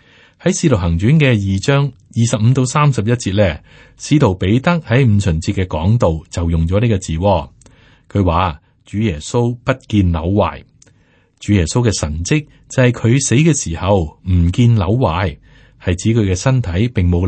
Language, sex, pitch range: Chinese, male, 90-120 Hz